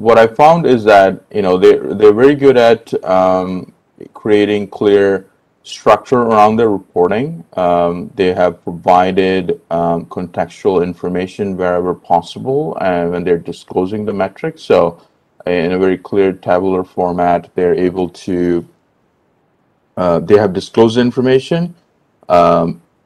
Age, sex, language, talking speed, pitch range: 30-49, male, English, 135 wpm, 90-105 Hz